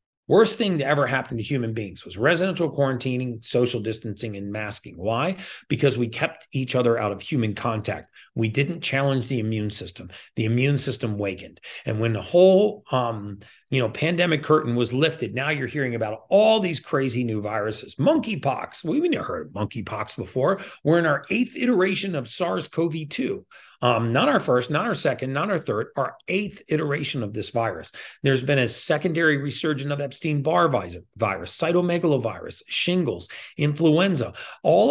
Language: English